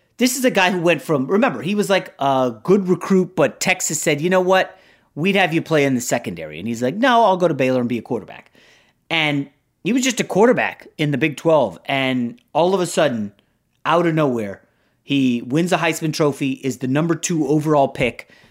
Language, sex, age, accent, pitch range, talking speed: English, male, 30-49, American, 125-170 Hz, 220 wpm